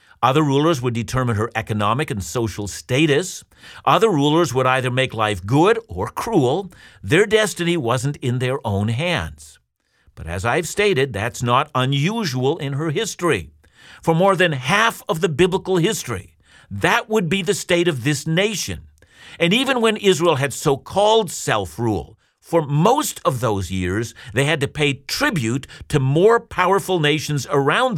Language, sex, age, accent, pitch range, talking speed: English, male, 50-69, American, 110-180 Hz, 160 wpm